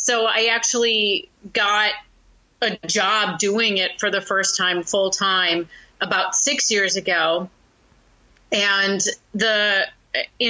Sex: female